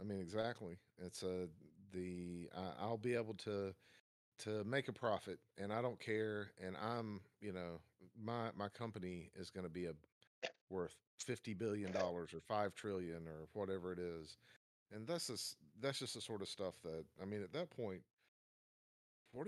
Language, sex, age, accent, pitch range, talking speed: English, male, 40-59, American, 85-115 Hz, 175 wpm